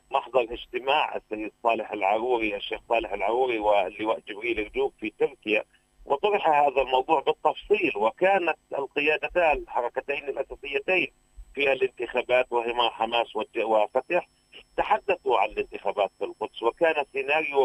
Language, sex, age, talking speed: Arabic, male, 40-59, 110 wpm